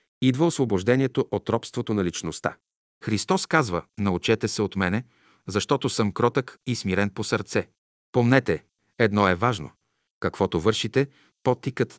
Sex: male